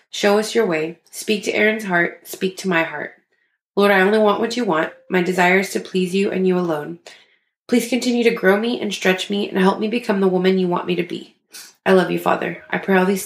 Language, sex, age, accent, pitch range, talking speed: English, female, 20-39, American, 175-215 Hz, 250 wpm